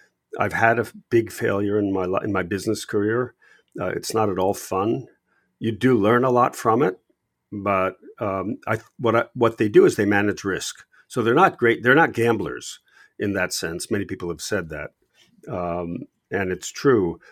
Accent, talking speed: American, 190 wpm